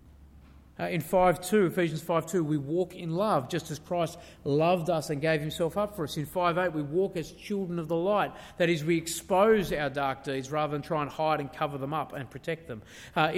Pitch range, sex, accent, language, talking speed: 130-165 Hz, male, Australian, English, 220 wpm